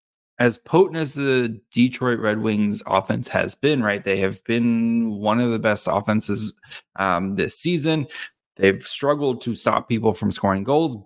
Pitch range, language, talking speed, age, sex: 100-125 Hz, English, 165 wpm, 30-49, male